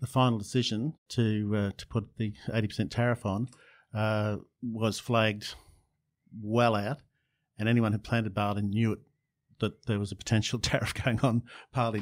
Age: 50-69